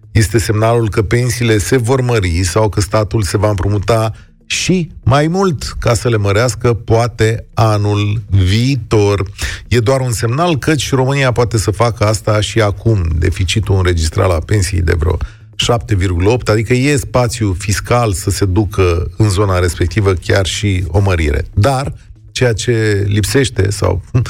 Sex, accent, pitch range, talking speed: male, native, 95-125 Hz, 150 wpm